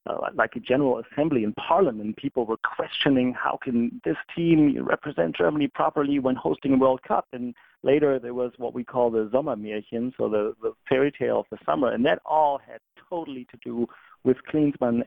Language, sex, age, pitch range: English, male, 40-59, 115-140 Hz